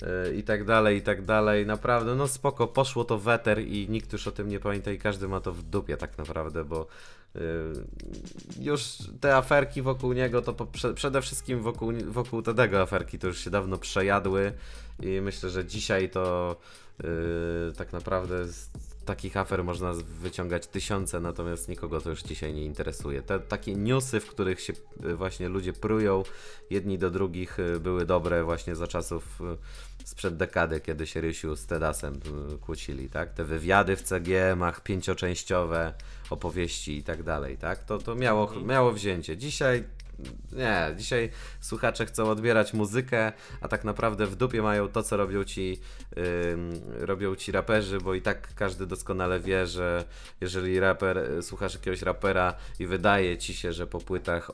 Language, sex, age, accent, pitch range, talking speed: Polish, male, 20-39, native, 85-105 Hz, 160 wpm